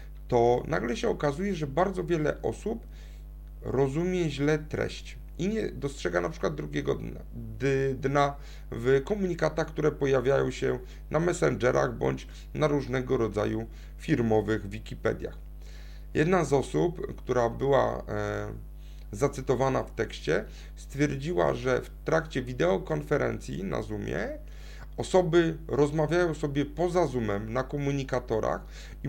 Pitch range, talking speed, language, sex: 110-150 Hz, 110 wpm, Polish, male